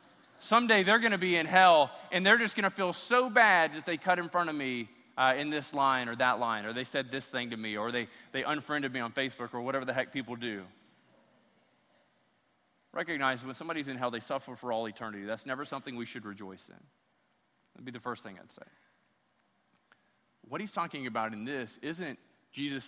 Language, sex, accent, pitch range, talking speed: English, male, American, 115-140 Hz, 215 wpm